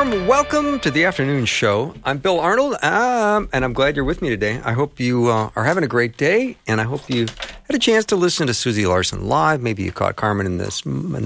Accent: American